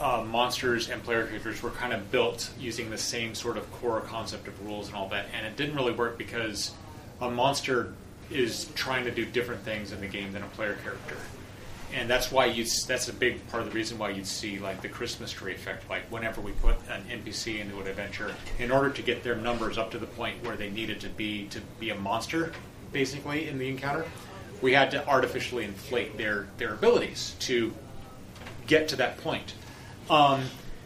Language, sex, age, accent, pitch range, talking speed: English, male, 30-49, American, 105-125 Hz, 210 wpm